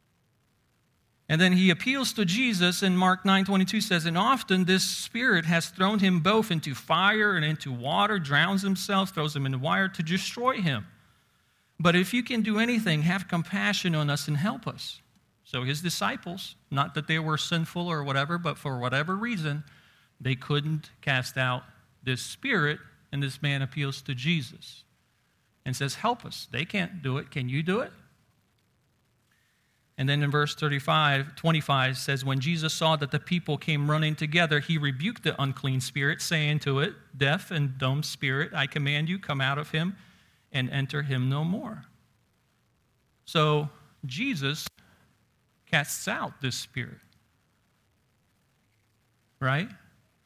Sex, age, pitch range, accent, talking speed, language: male, 40-59, 135-175 Hz, American, 155 wpm, English